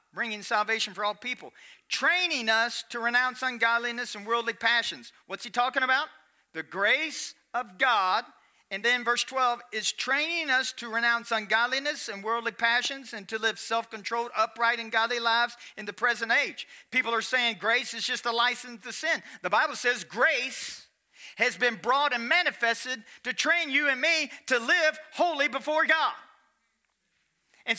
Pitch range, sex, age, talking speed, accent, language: 185-285 Hz, male, 40-59, 165 wpm, American, English